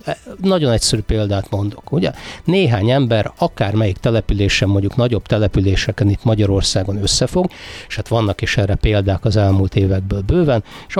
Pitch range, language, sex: 100-115 Hz, Hungarian, male